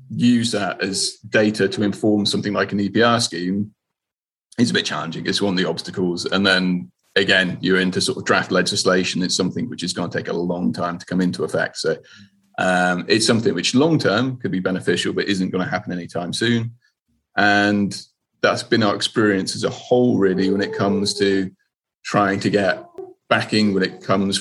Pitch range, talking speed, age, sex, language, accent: 95-115 Hz, 195 wpm, 30-49, male, English, British